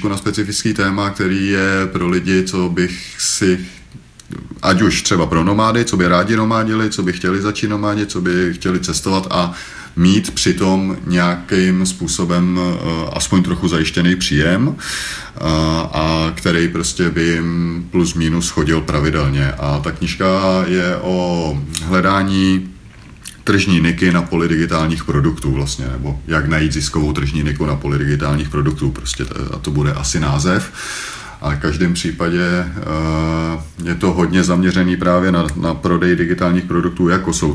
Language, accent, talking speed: Czech, native, 145 wpm